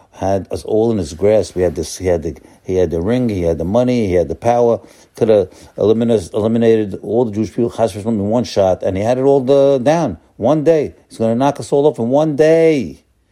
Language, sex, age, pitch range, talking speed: English, male, 60-79, 95-130 Hz, 245 wpm